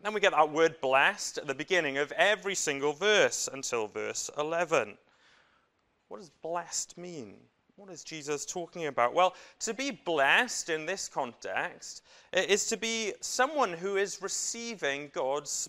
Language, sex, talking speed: English, male, 155 wpm